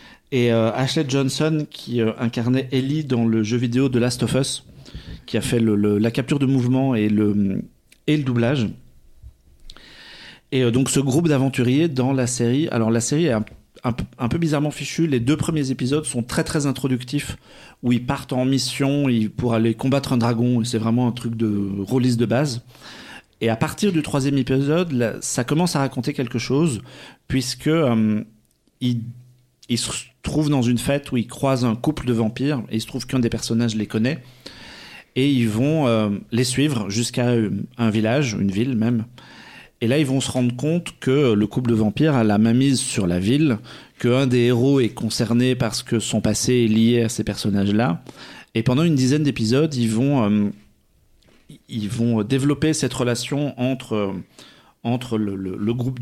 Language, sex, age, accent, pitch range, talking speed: French, male, 40-59, French, 115-135 Hz, 190 wpm